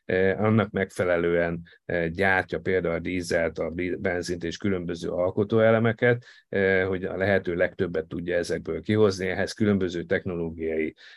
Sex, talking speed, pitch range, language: male, 115 wpm, 85-100 Hz, Hungarian